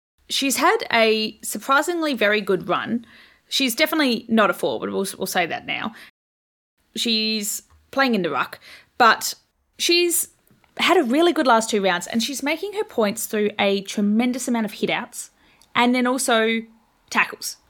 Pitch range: 195-250 Hz